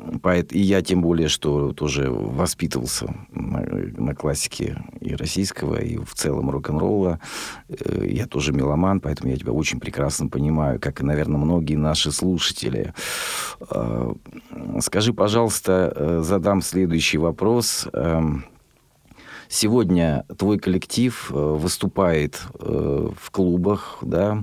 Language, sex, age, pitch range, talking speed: Russian, male, 50-69, 75-100 Hz, 100 wpm